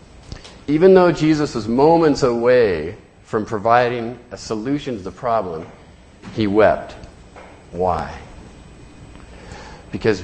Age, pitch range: 40-59, 105-140 Hz